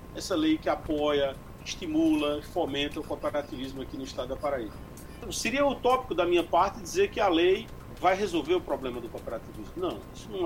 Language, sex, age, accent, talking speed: Portuguese, male, 40-59, Brazilian, 180 wpm